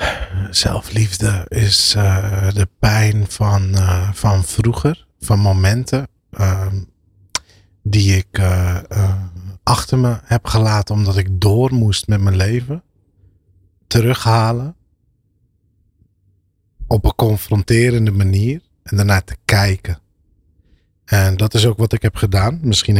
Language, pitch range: Dutch, 95-110 Hz